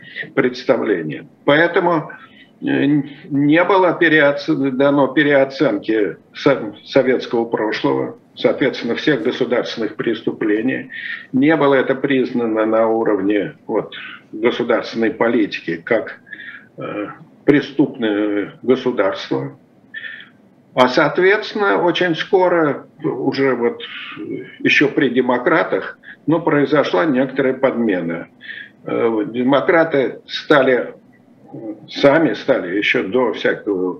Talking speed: 80 wpm